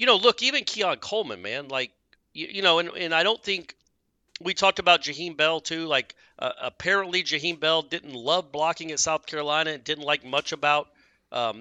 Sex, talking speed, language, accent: male, 200 wpm, English, American